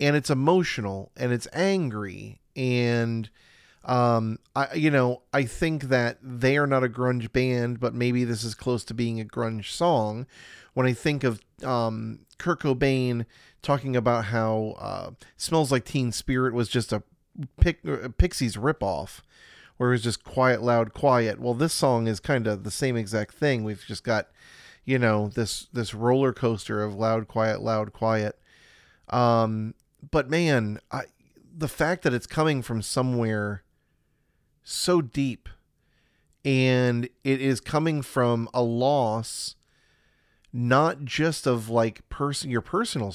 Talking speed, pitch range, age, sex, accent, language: 155 wpm, 110-135 Hz, 40-59, male, American, English